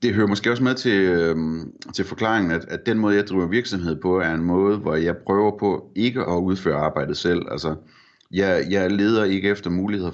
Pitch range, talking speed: 85-100 Hz, 215 wpm